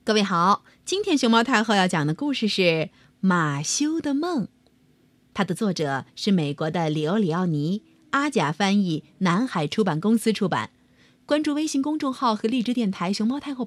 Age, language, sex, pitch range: 30-49, Chinese, female, 170-280 Hz